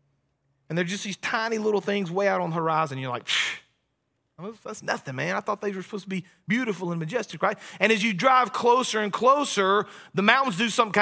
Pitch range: 185-220 Hz